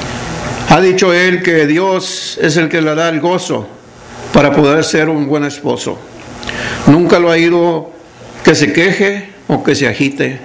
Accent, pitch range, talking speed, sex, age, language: American, 150-185 Hz, 165 wpm, male, 60-79, English